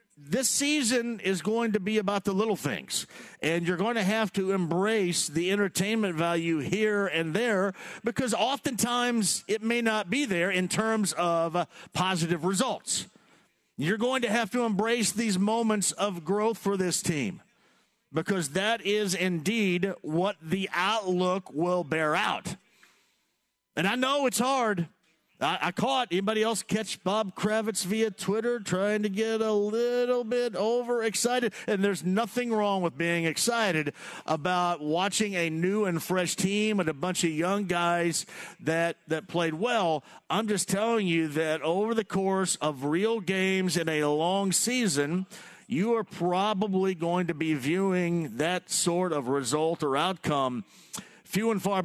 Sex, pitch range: male, 175-220 Hz